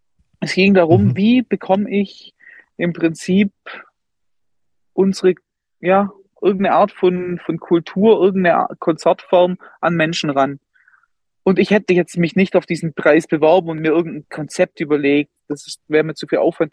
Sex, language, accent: male, German, German